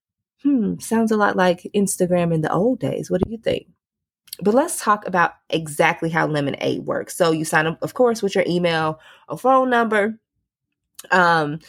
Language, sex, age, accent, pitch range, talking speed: English, female, 20-39, American, 170-220 Hz, 180 wpm